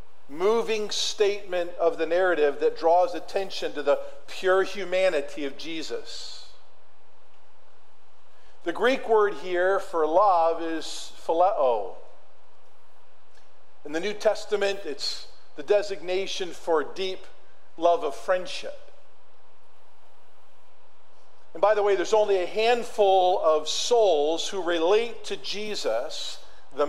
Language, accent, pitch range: English, American, 175-235 Hz